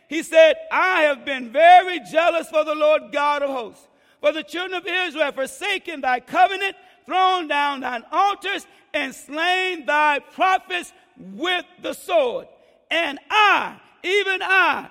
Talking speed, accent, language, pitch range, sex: 150 wpm, American, English, 205-320 Hz, male